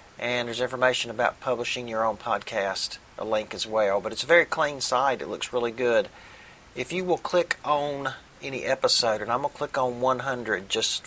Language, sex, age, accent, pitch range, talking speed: English, male, 50-69, American, 115-140 Hz, 200 wpm